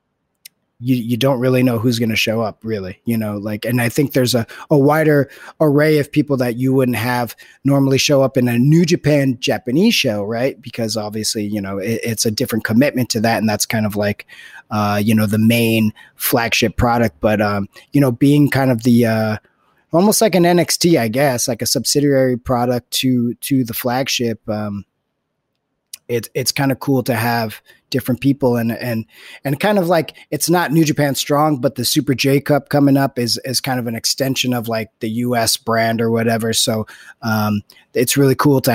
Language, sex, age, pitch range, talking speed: English, male, 30-49, 115-135 Hz, 200 wpm